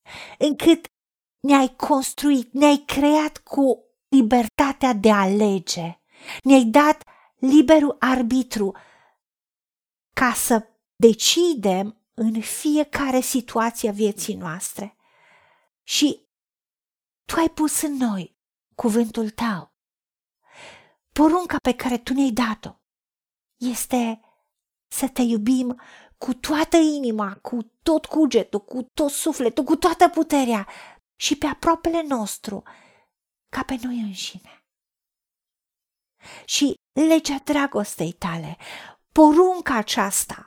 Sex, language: female, Romanian